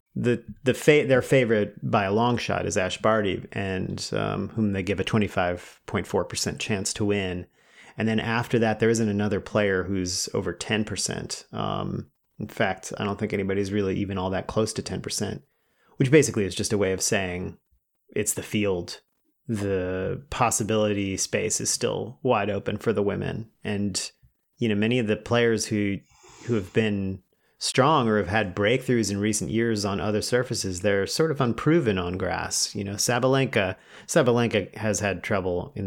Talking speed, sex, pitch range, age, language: 185 wpm, male, 100-115 Hz, 30-49, English